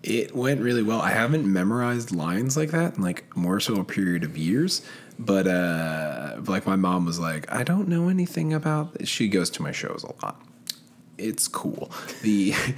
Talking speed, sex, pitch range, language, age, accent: 195 wpm, male, 85-145 Hz, English, 20-39, American